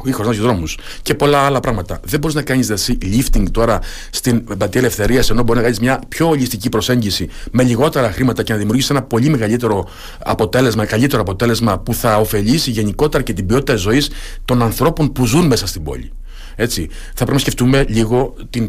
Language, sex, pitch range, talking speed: Greek, male, 110-130 Hz, 185 wpm